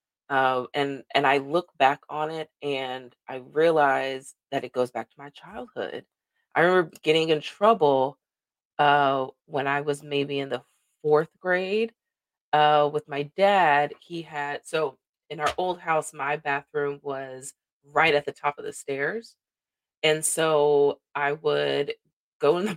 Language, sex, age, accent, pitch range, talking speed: English, female, 20-39, American, 140-160 Hz, 160 wpm